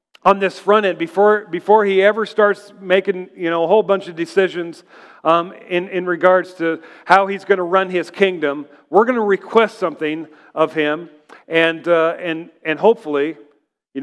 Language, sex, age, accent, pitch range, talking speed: English, male, 50-69, American, 170-210 Hz, 180 wpm